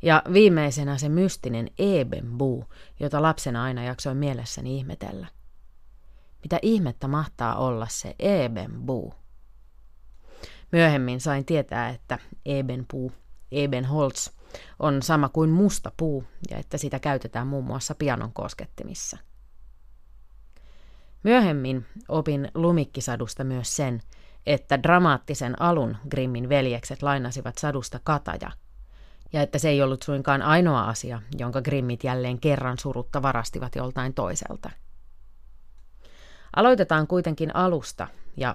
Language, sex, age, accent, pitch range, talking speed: Finnish, female, 30-49, native, 120-150 Hz, 105 wpm